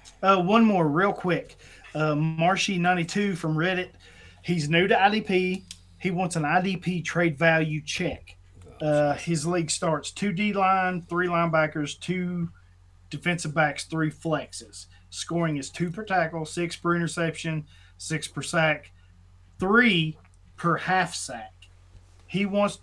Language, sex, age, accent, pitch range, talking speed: English, male, 30-49, American, 140-180 Hz, 130 wpm